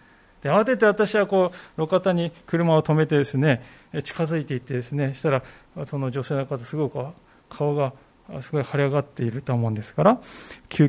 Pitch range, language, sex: 130-195 Hz, Japanese, male